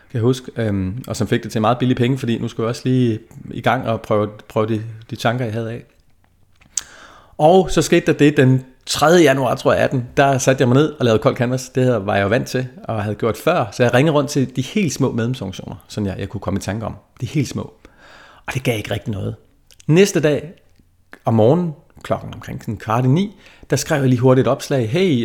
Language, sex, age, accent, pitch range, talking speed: Danish, male, 30-49, native, 105-130 Hz, 240 wpm